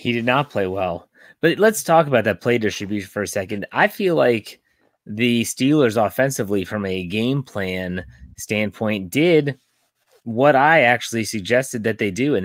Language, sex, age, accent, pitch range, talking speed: English, male, 30-49, American, 100-125 Hz, 170 wpm